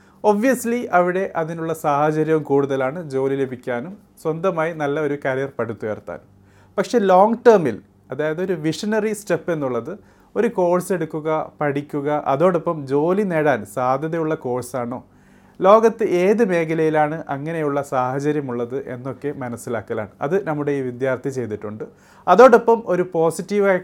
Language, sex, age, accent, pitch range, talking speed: Malayalam, male, 30-49, native, 130-170 Hz, 110 wpm